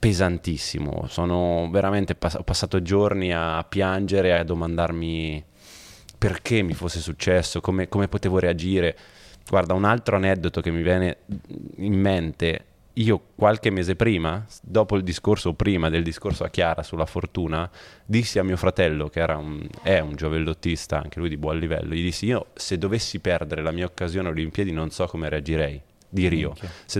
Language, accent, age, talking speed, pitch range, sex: Italian, native, 20-39, 170 wpm, 85-100 Hz, male